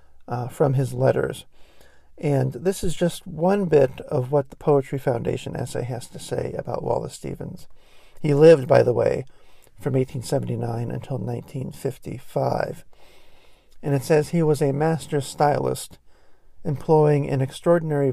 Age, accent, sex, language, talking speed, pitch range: 50-69, American, male, English, 140 wpm, 130-155 Hz